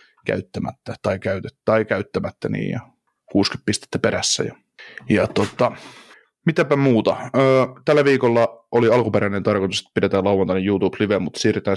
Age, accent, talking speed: 30-49, native, 135 wpm